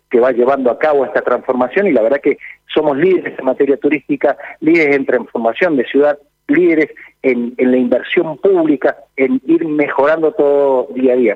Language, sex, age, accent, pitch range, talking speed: Spanish, male, 40-59, Argentinian, 130-180 Hz, 180 wpm